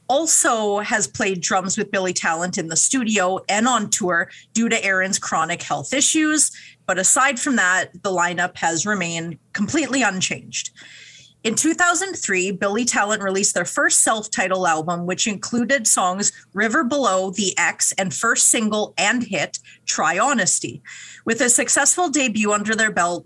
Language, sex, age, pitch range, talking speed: English, female, 40-59, 190-255 Hz, 150 wpm